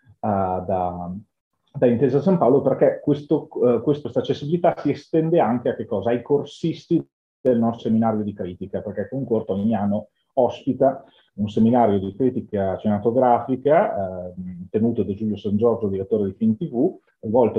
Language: Italian